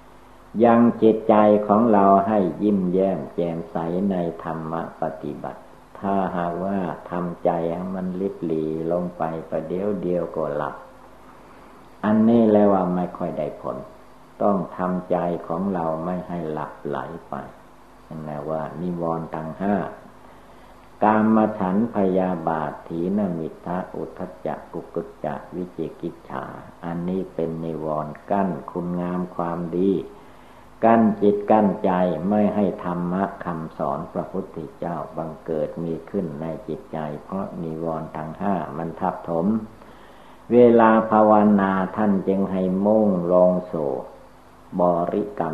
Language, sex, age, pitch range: Thai, male, 60-79, 80-100 Hz